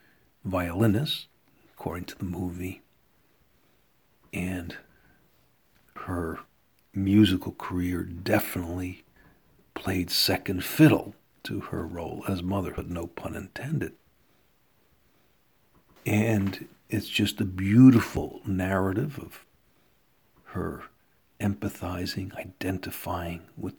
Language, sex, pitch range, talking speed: English, male, 90-100 Hz, 80 wpm